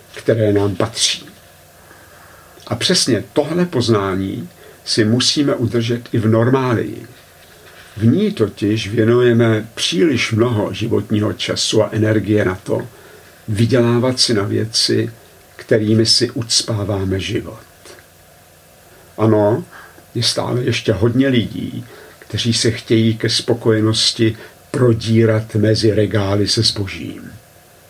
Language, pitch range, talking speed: Czech, 100-120 Hz, 105 wpm